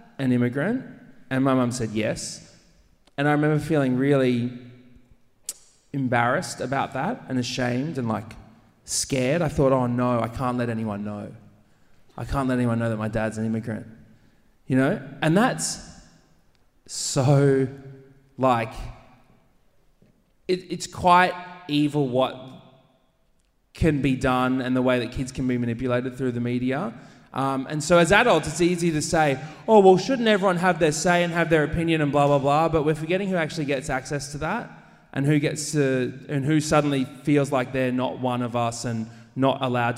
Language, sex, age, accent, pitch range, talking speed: English, male, 20-39, Australian, 115-145 Hz, 170 wpm